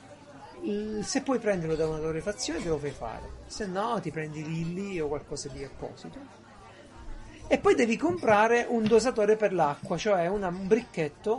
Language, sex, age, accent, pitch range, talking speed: Italian, male, 40-59, native, 145-195 Hz, 160 wpm